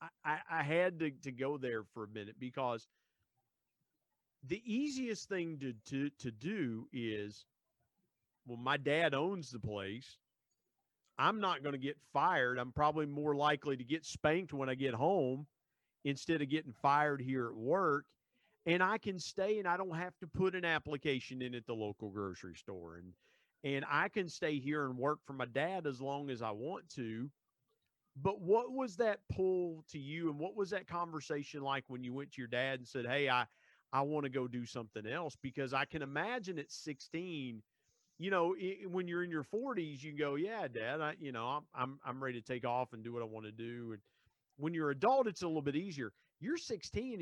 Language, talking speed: English, 205 wpm